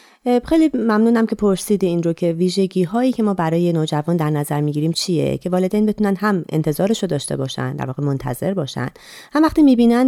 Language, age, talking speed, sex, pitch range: Persian, 30-49, 190 wpm, female, 155-225 Hz